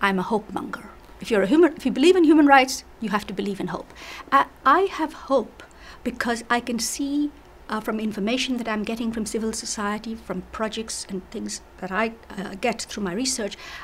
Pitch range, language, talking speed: 210-270 Hz, English, 190 wpm